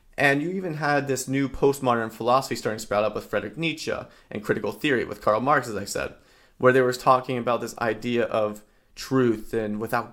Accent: American